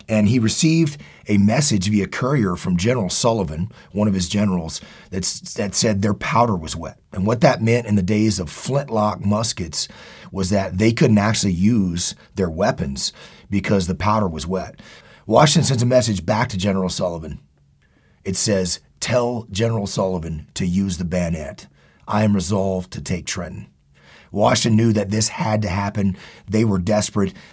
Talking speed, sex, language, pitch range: 165 wpm, male, English, 95-115 Hz